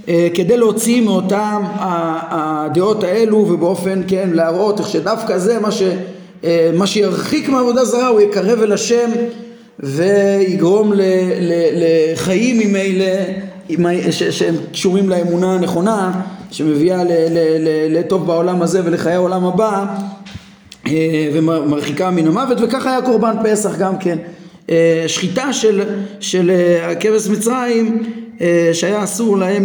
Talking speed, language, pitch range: 115 wpm, Hebrew, 175-225 Hz